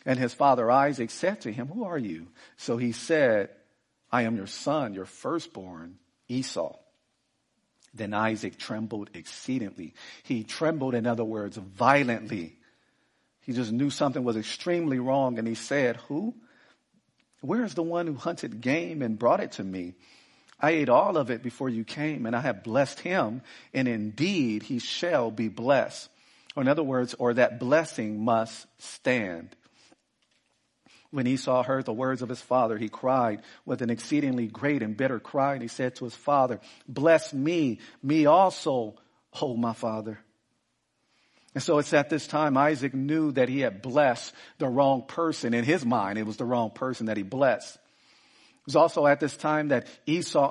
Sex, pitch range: male, 115-145 Hz